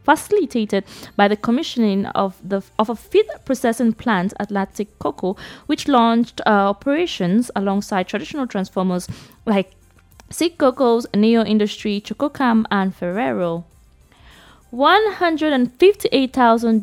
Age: 20-39